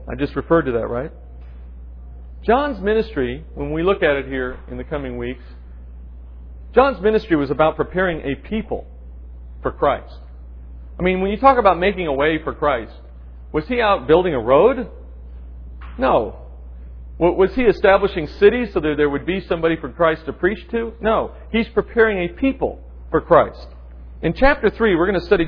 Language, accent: English, American